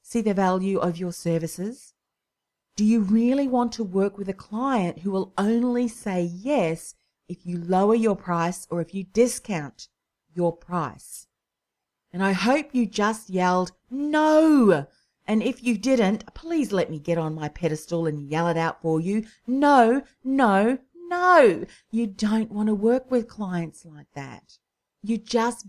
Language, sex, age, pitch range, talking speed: English, female, 40-59, 175-230 Hz, 160 wpm